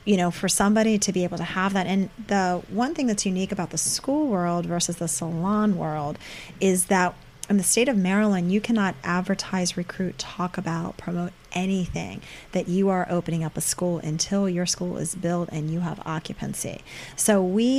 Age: 30-49